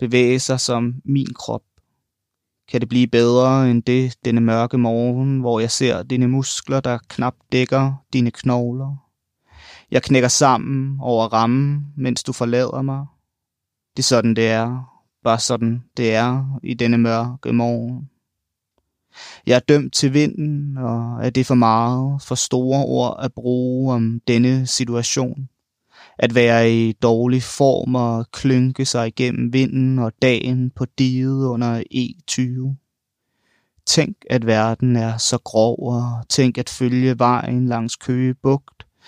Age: 20-39